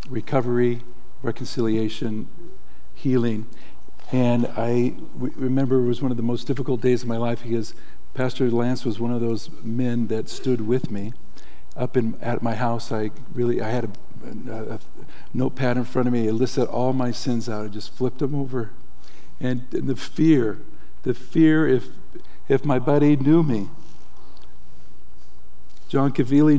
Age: 50-69